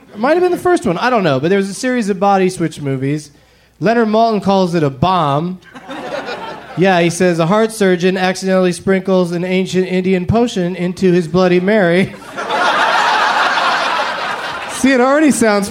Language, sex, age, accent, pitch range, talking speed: English, male, 30-49, American, 170-225 Hz, 170 wpm